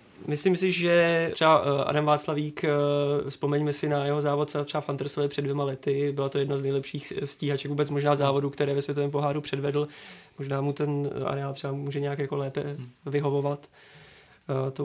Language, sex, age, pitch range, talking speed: Czech, male, 20-39, 140-145 Hz, 170 wpm